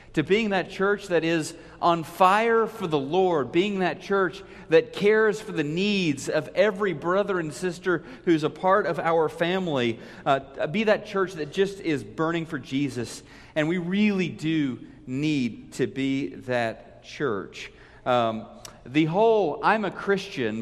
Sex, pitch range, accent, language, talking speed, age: male, 135-175 Hz, American, English, 160 wpm, 40-59